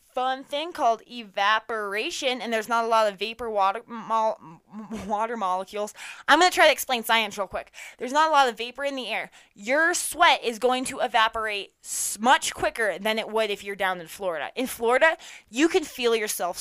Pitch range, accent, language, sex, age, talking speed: 200-260 Hz, American, English, female, 20-39, 190 wpm